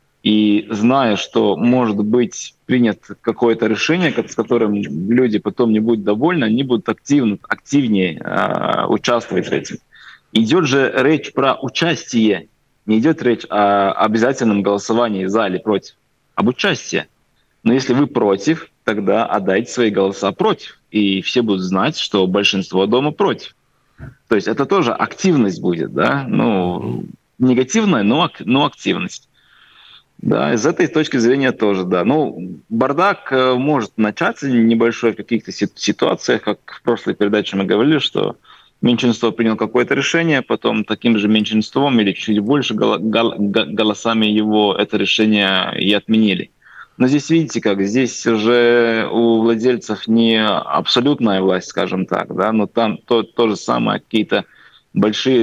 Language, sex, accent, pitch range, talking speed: Russian, male, native, 105-125 Hz, 140 wpm